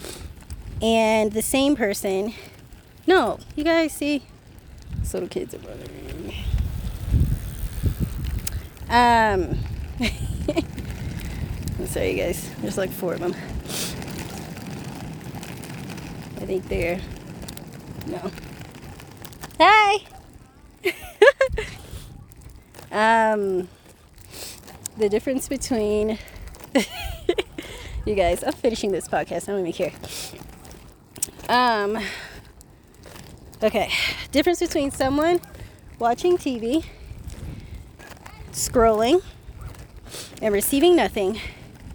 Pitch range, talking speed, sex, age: 185-265 Hz, 75 wpm, female, 20-39